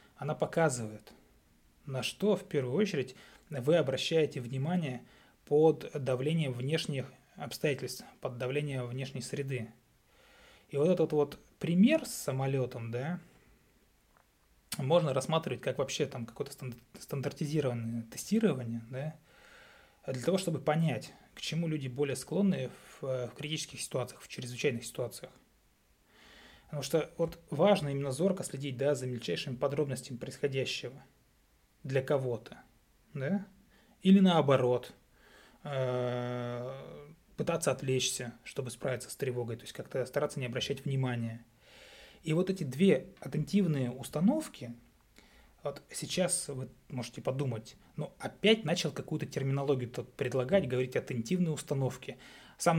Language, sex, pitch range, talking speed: Russian, male, 125-160 Hz, 115 wpm